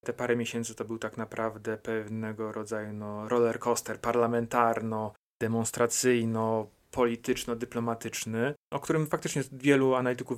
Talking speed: 105 wpm